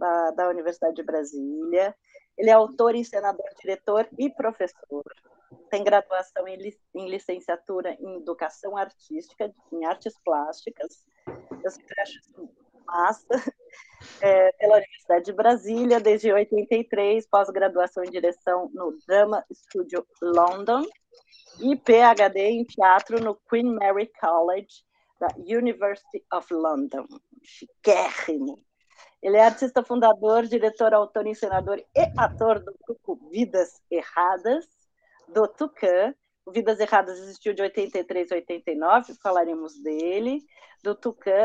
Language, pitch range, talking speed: Portuguese, 180-230 Hz, 115 wpm